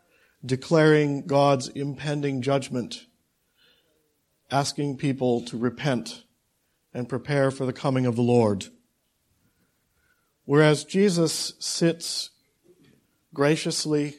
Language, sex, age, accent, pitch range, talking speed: English, male, 50-69, American, 135-170 Hz, 85 wpm